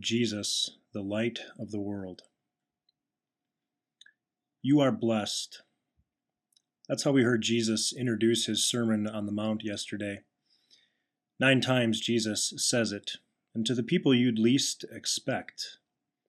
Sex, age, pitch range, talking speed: male, 30-49, 105-120 Hz, 120 wpm